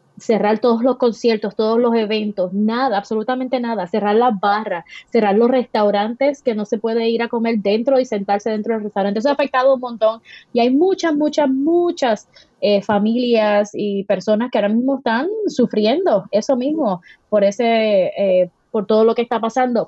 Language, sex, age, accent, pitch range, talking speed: English, female, 20-39, American, 210-260 Hz, 180 wpm